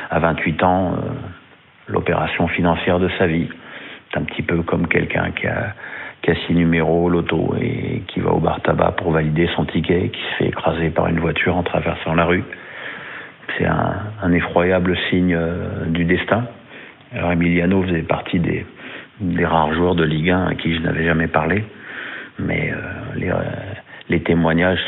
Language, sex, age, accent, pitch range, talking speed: French, male, 50-69, French, 80-90 Hz, 180 wpm